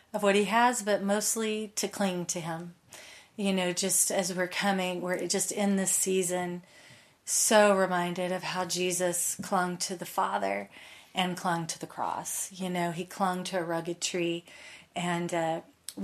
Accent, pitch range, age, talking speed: American, 175-195 Hz, 30-49, 165 wpm